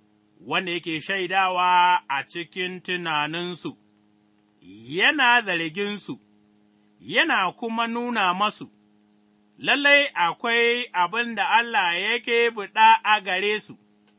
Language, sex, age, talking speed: English, male, 30-49, 95 wpm